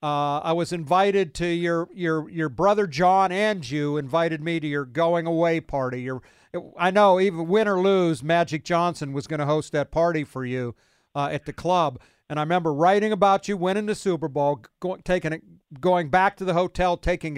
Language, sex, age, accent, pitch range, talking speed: English, male, 50-69, American, 155-195 Hz, 205 wpm